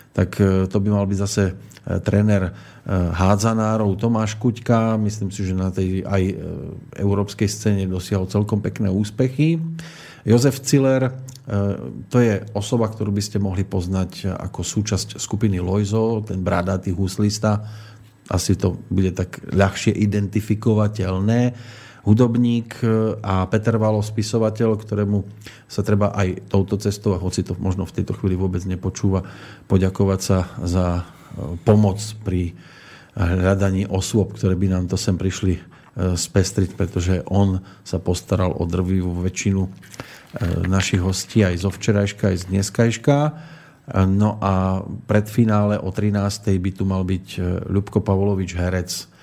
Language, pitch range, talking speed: Slovak, 95-110 Hz, 130 wpm